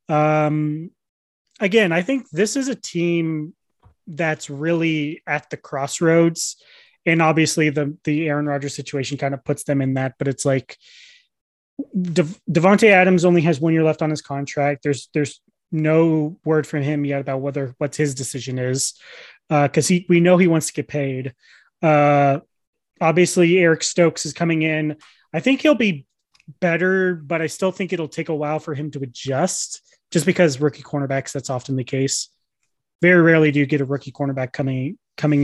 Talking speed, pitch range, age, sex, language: 175 wpm, 145-175 Hz, 30-49, male, English